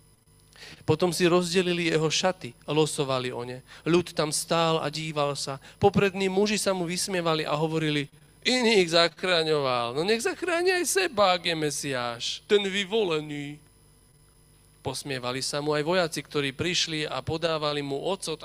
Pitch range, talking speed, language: 145-180 Hz, 140 wpm, Slovak